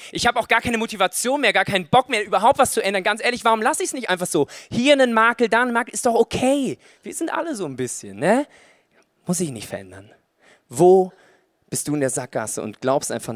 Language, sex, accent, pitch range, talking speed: German, male, German, 120-185 Hz, 240 wpm